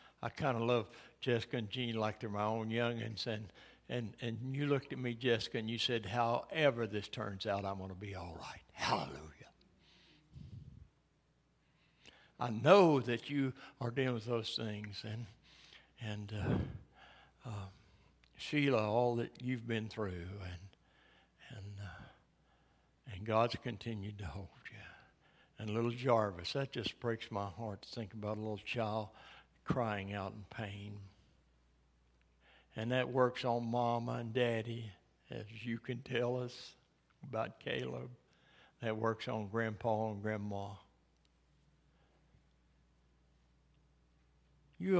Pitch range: 105-125 Hz